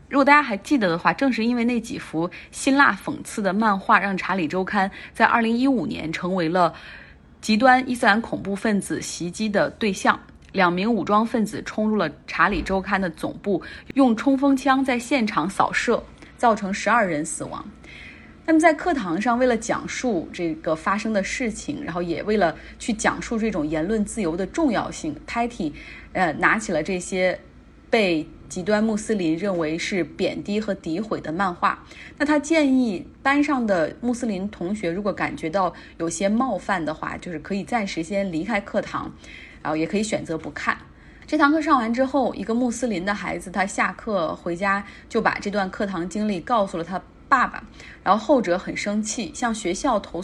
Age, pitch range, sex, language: 30-49, 180-240 Hz, female, Chinese